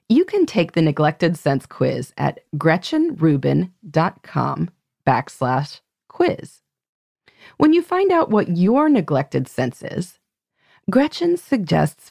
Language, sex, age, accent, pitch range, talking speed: English, female, 30-49, American, 150-250 Hz, 110 wpm